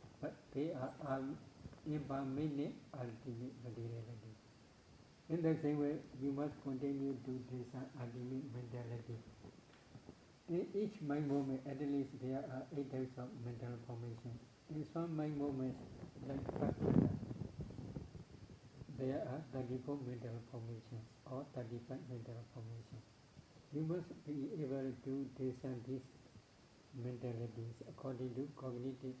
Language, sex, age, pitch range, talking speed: English, male, 60-79, 120-140 Hz, 115 wpm